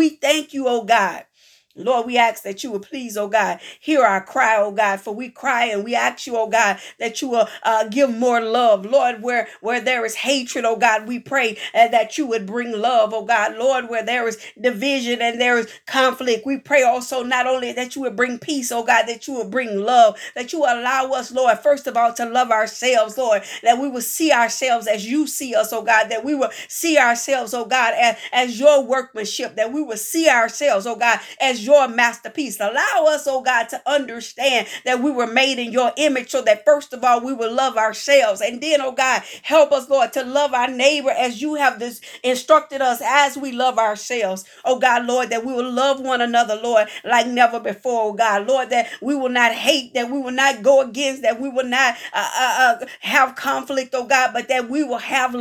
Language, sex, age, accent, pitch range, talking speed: English, female, 50-69, American, 230-270 Hz, 225 wpm